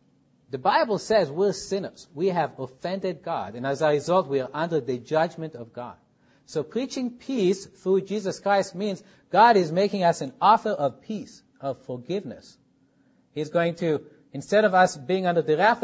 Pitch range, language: 150-205 Hz, English